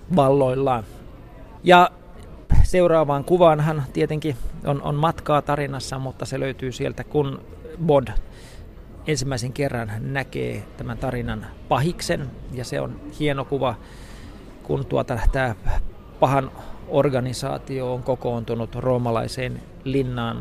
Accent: native